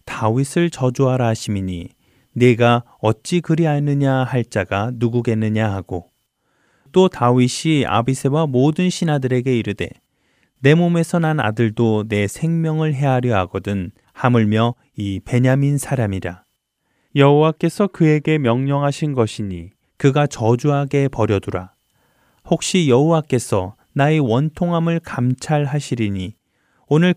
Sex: male